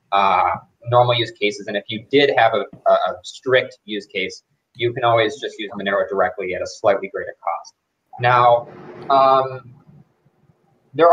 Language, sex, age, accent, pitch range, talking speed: English, male, 20-39, American, 105-145 Hz, 160 wpm